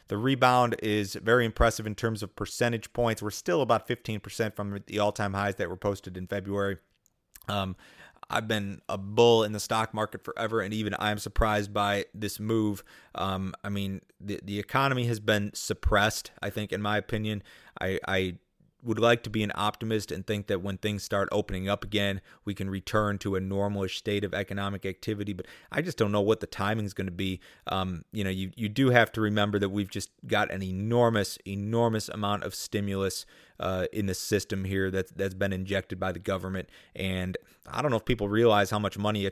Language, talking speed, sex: English, 205 wpm, male